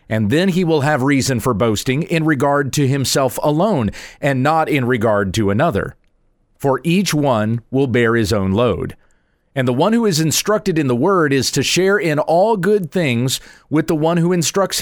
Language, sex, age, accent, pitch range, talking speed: English, male, 40-59, American, 120-175 Hz, 195 wpm